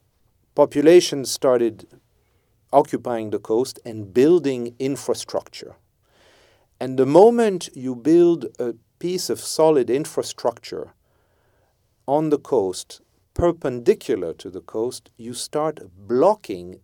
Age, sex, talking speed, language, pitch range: 40-59, male, 100 wpm, English, 110-155 Hz